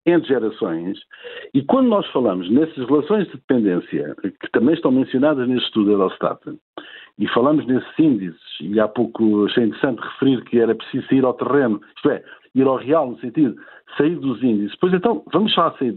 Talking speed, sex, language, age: 185 wpm, male, Portuguese, 60-79